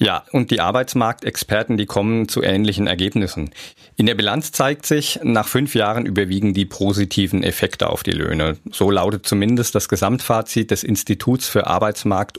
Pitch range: 95-120 Hz